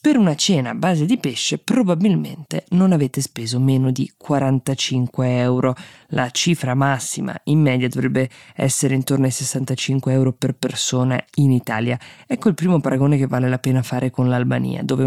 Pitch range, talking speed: 125-150 Hz, 165 wpm